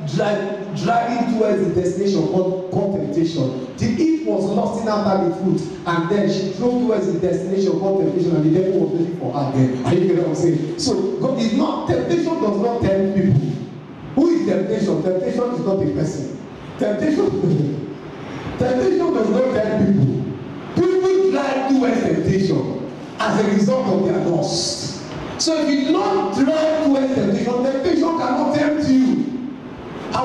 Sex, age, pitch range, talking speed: male, 50-69, 190-270 Hz, 170 wpm